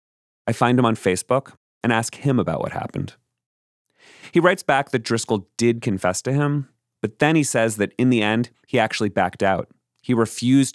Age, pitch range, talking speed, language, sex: 30-49, 95-140 Hz, 190 wpm, English, male